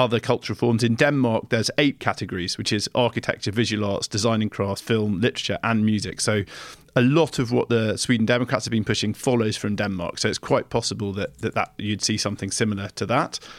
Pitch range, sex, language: 105-125 Hz, male, English